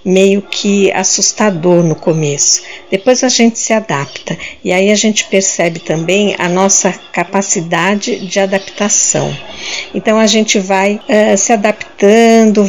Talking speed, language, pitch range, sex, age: 130 wpm, Portuguese, 180-210 Hz, female, 60-79